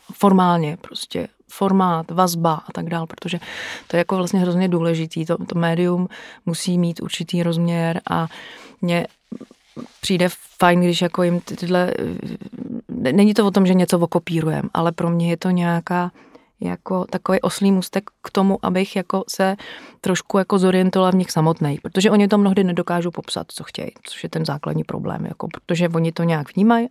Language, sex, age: Czech, female, 30-49